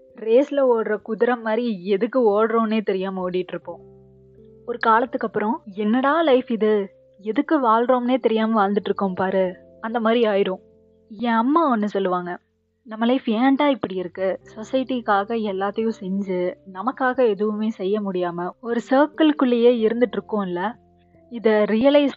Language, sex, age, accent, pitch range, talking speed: Tamil, female, 20-39, native, 190-230 Hz, 115 wpm